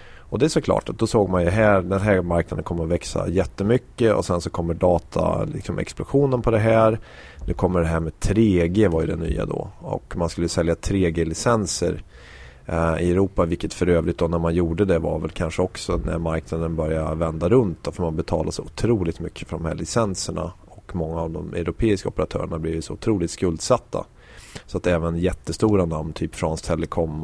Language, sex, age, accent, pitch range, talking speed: Swedish, male, 30-49, native, 80-95 Hz, 200 wpm